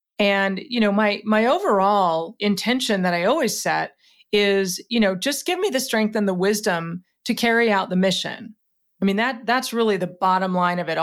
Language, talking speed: English, 200 wpm